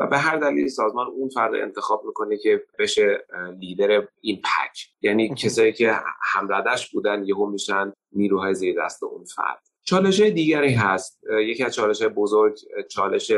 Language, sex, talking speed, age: Persian, male, 155 wpm, 30-49